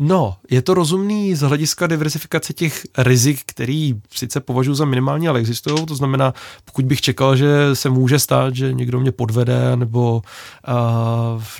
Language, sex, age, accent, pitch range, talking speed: Czech, male, 20-39, native, 125-150 Hz, 160 wpm